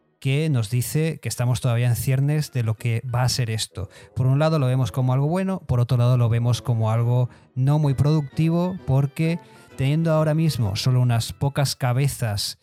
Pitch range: 120-145 Hz